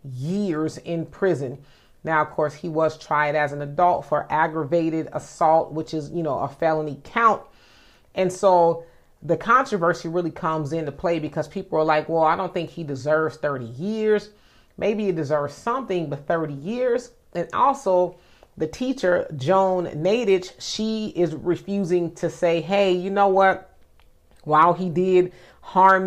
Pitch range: 160-200 Hz